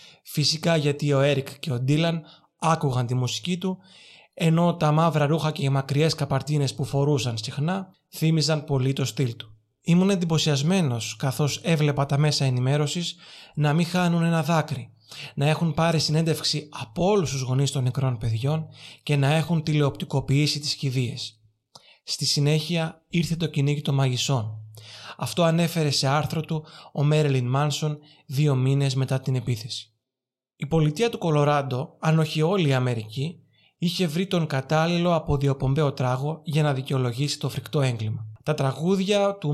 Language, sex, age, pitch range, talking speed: Greek, male, 20-39, 135-160 Hz, 150 wpm